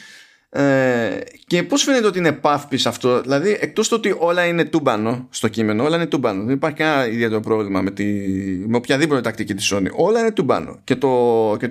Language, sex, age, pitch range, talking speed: Greek, male, 20-39, 115-165 Hz, 185 wpm